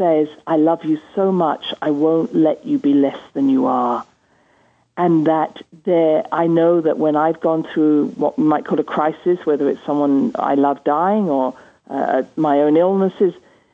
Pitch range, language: 155-200 Hz, English